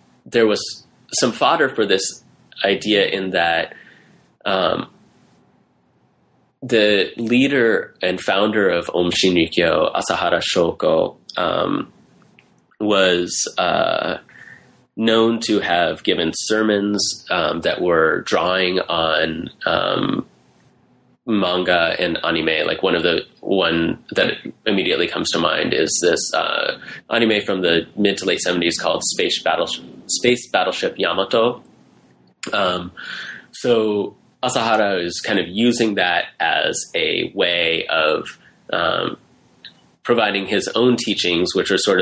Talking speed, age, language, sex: 115 wpm, 30-49, English, male